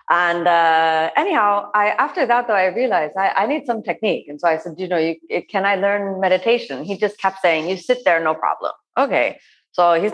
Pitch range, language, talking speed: 160-210 Hz, English, 205 wpm